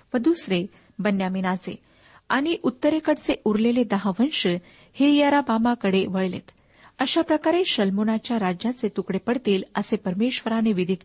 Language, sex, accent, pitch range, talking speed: Marathi, female, native, 195-255 Hz, 90 wpm